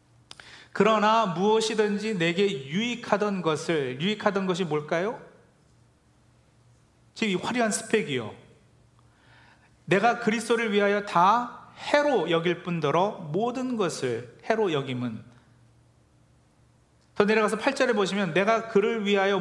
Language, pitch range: Korean, 165-225 Hz